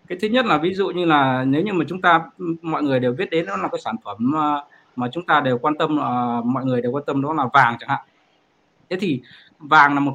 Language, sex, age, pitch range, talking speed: Vietnamese, male, 20-39, 130-170 Hz, 265 wpm